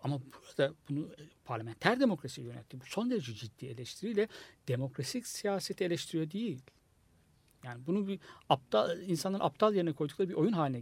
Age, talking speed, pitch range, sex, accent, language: 60-79, 140 wpm, 135-190 Hz, male, native, Turkish